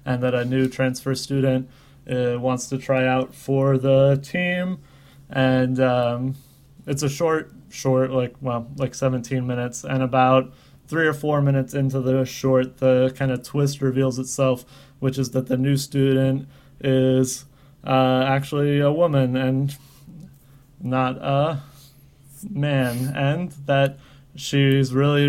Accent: American